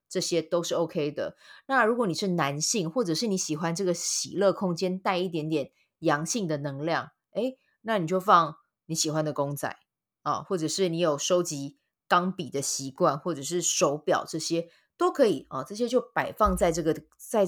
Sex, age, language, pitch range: female, 20-39, Chinese, 160-195 Hz